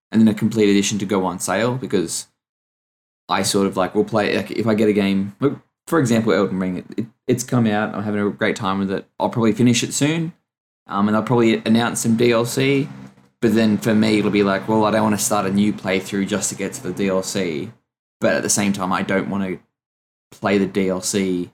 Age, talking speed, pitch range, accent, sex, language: 10-29, 235 wpm, 95-115 Hz, Australian, male, English